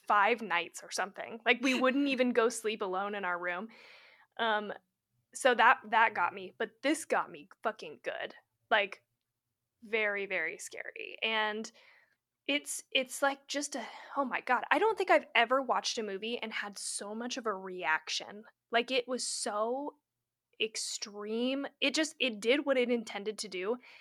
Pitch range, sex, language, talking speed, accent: 205-265 Hz, female, English, 170 wpm, American